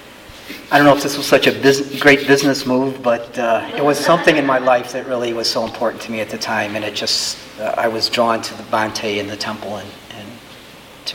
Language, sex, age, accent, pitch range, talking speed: English, male, 40-59, American, 115-140 Hz, 240 wpm